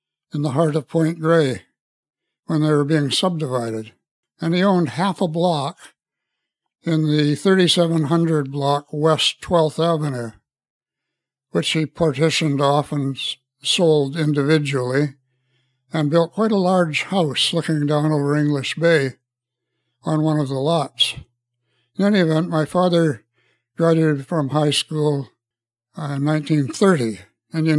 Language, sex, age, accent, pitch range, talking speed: English, male, 60-79, American, 140-170 Hz, 125 wpm